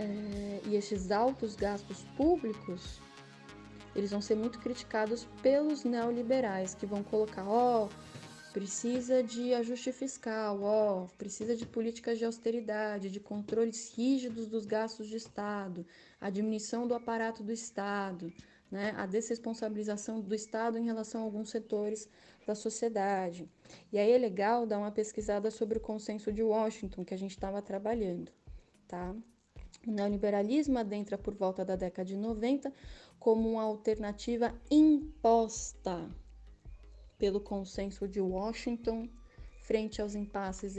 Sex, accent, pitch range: female, Brazilian, 200-235 Hz